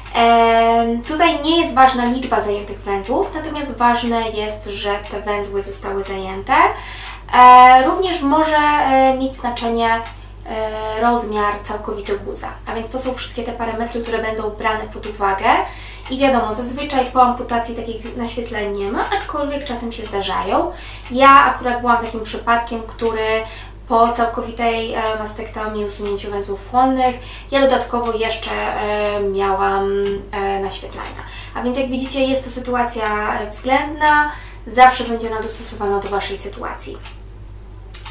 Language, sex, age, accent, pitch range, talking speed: Polish, female, 20-39, native, 215-255 Hz, 125 wpm